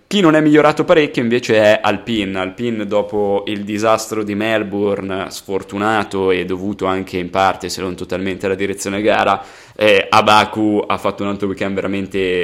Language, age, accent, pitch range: Italian, 20-39, native, 95-105 Hz